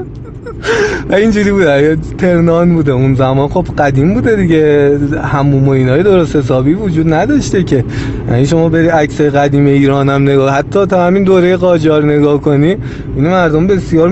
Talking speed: 150 wpm